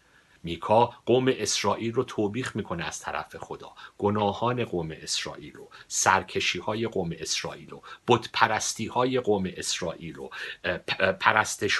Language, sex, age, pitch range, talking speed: Persian, male, 50-69, 90-120 Hz, 120 wpm